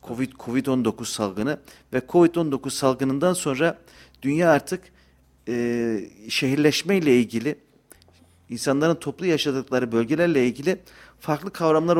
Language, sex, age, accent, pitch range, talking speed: Turkish, male, 50-69, native, 110-170 Hz, 95 wpm